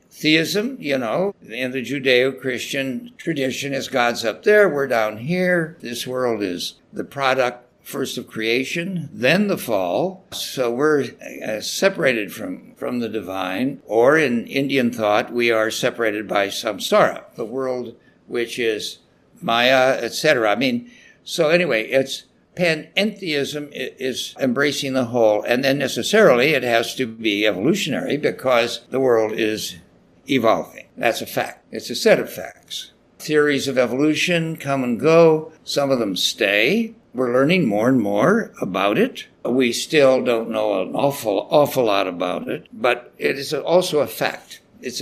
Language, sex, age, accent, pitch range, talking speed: English, male, 60-79, American, 120-160 Hz, 150 wpm